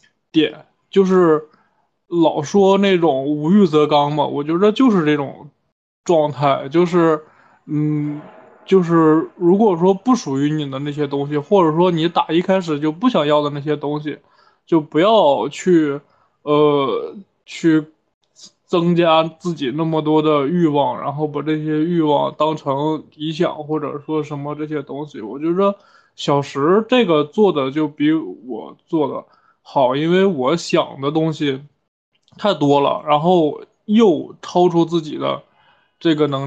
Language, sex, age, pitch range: Chinese, male, 20-39, 150-175 Hz